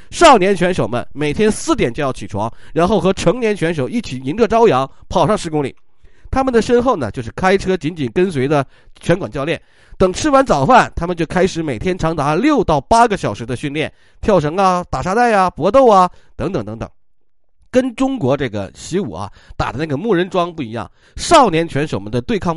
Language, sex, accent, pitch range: Chinese, male, native, 130-195 Hz